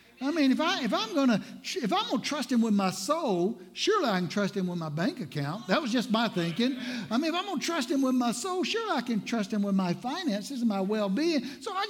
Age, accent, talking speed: 60-79, American, 255 wpm